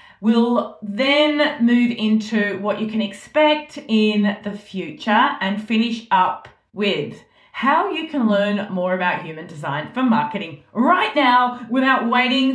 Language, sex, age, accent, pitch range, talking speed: English, female, 30-49, Australian, 190-255 Hz, 140 wpm